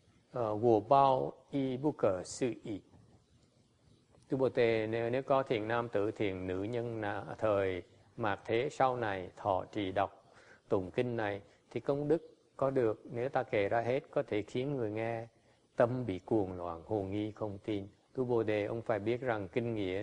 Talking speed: 175 wpm